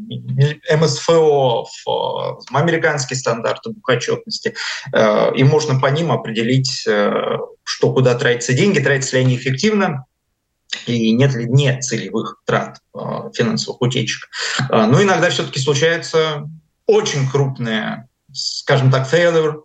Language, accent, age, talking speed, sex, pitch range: Russian, native, 20-39, 105 wpm, male, 130-200 Hz